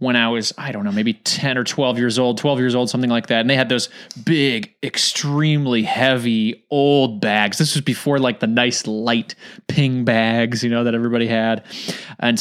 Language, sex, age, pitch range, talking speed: English, male, 20-39, 125-200 Hz, 205 wpm